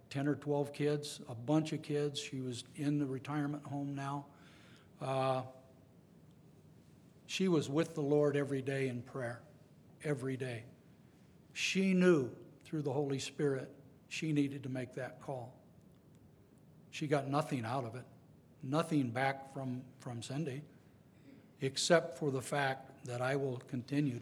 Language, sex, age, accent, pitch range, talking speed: English, male, 60-79, American, 130-150 Hz, 145 wpm